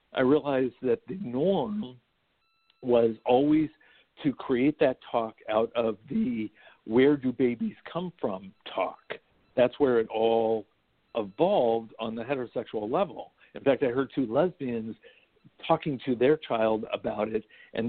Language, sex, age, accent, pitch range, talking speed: English, male, 60-79, American, 115-135 Hz, 140 wpm